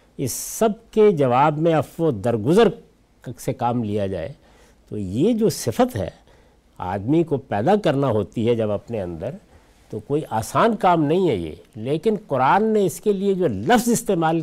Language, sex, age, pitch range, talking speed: Urdu, male, 60-79, 120-180 Hz, 175 wpm